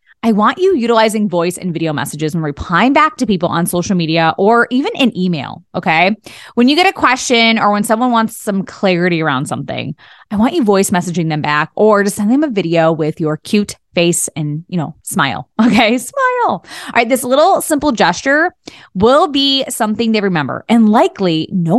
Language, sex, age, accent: English, female, 20-39, American